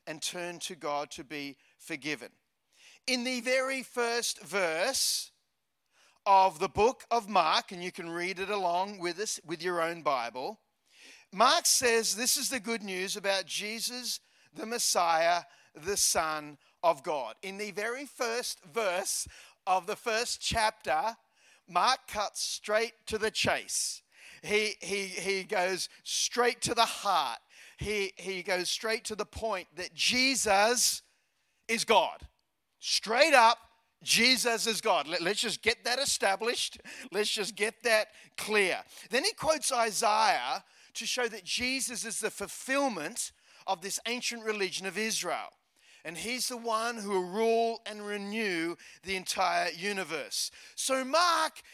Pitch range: 185-240 Hz